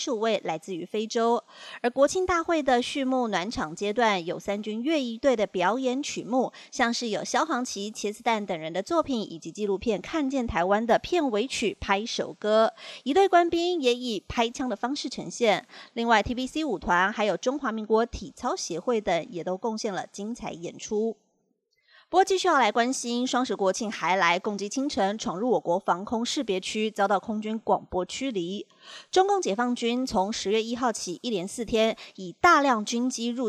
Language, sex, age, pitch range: Chinese, female, 30-49, 200-260 Hz